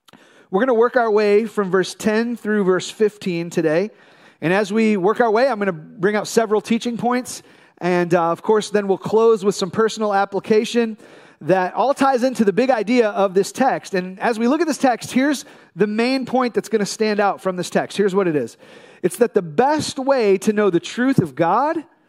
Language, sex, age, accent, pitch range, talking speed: English, male, 30-49, American, 175-225 Hz, 225 wpm